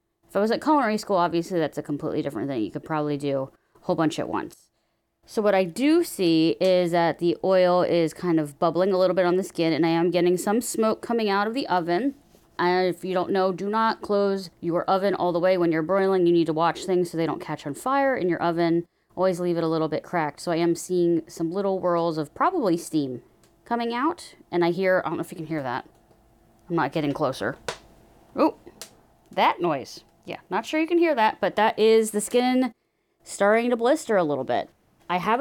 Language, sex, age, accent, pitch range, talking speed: English, female, 20-39, American, 165-205 Hz, 235 wpm